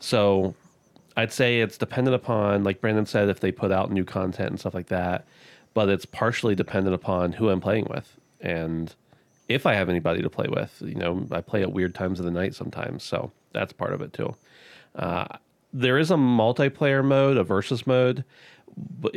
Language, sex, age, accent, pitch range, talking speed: English, male, 30-49, American, 95-115 Hz, 195 wpm